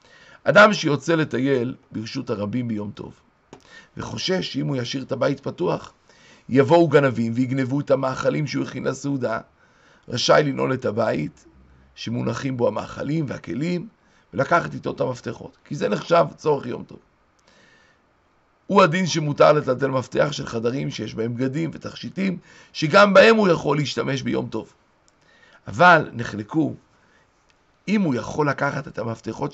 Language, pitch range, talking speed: Hebrew, 130-185 Hz, 135 wpm